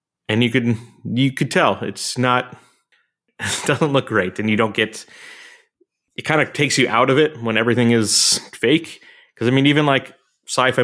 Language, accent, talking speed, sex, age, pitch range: English, American, 190 wpm, male, 30-49, 105-130 Hz